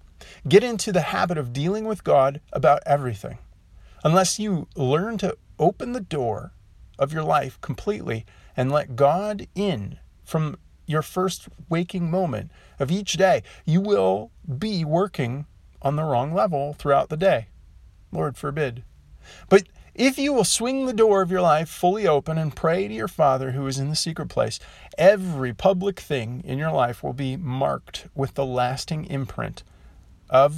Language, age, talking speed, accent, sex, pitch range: English, 40-59, 165 wpm, American, male, 105-165 Hz